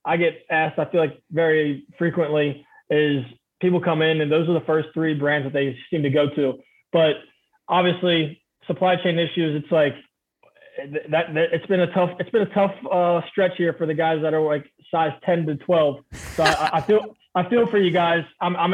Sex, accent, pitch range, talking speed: male, American, 155-180 Hz, 210 wpm